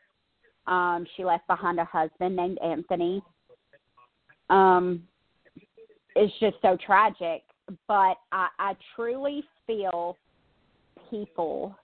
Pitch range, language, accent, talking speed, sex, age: 170-205 Hz, English, American, 95 wpm, female, 40-59